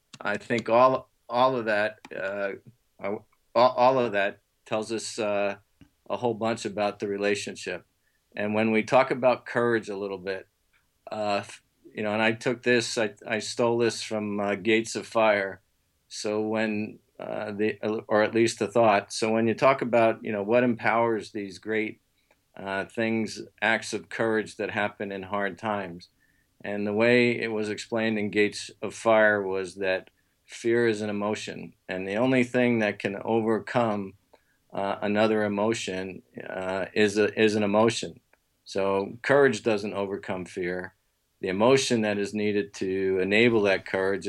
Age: 50-69